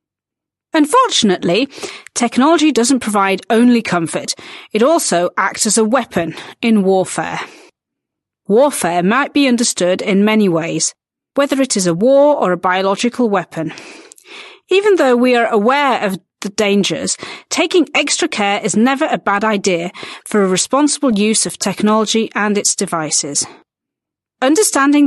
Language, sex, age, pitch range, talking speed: Slovak, female, 40-59, 190-285 Hz, 135 wpm